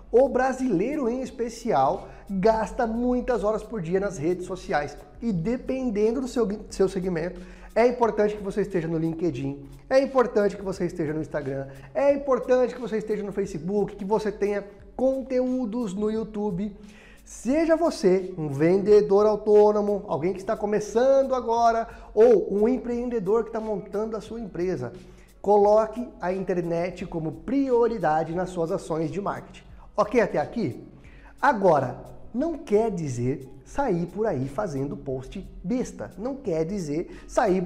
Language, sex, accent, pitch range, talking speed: Portuguese, male, Brazilian, 185-235 Hz, 145 wpm